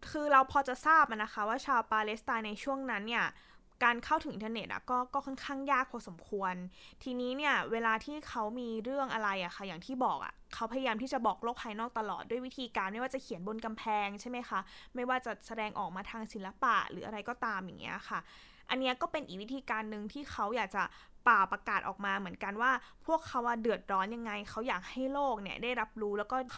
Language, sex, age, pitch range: Thai, female, 20-39, 215-265 Hz